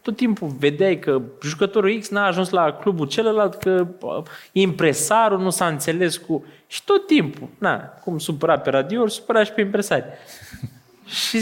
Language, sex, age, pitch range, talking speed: Romanian, male, 20-39, 145-235 Hz, 160 wpm